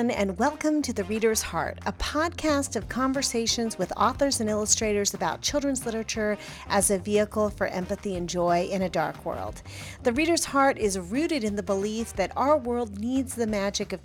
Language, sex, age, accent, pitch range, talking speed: English, female, 40-59, American, 195-260 Hz, 185 wpm